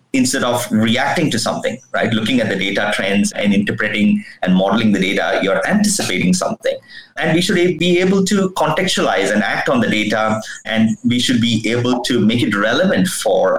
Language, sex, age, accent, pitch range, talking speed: English, male, 30-49, Indian, 115-195 Hz, 185 wpm